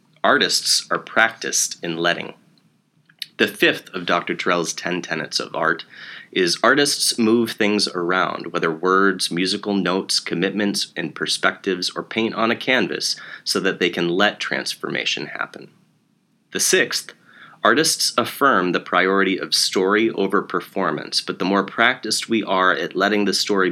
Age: 30-49